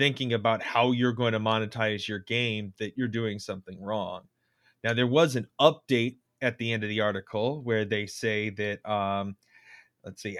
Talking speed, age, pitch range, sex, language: 185 wpm, 30-49, 115-140 Hz, male, English